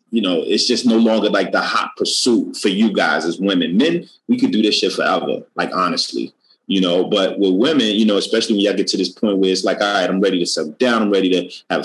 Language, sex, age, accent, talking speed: English, male, 30-49, American, 265 wpm